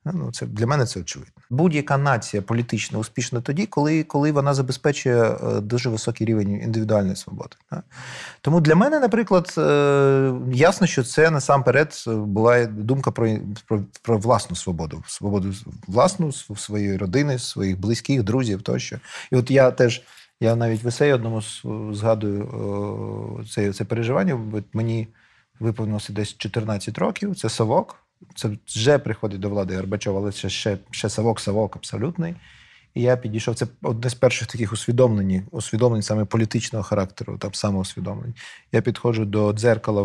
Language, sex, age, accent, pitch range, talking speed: Ukrainian, male, 30-49, native, 105-130 Hz, 130 wpm